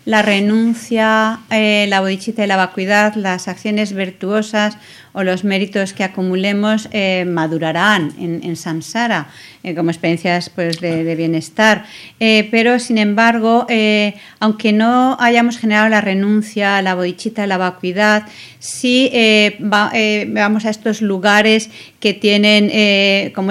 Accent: Spanish